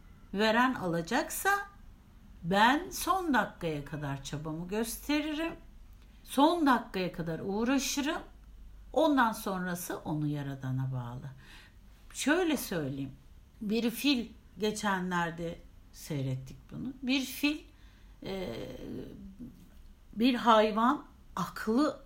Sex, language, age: female, Turkish, 60-79